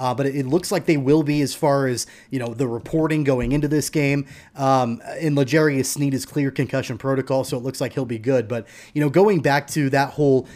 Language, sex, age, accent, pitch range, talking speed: English, male, 30-49, American, 130-160 Hz, 240 wpm